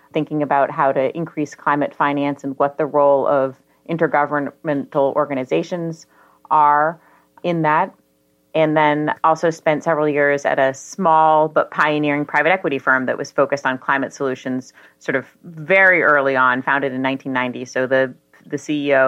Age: 30-49